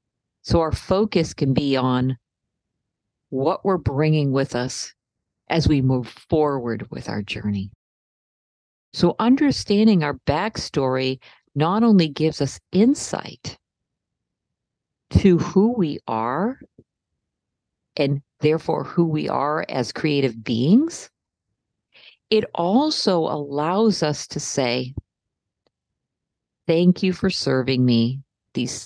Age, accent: 50-69, American